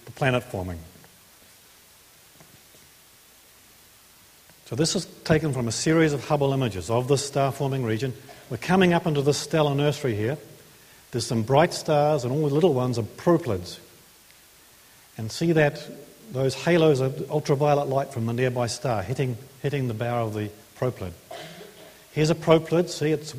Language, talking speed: English, 150 wpm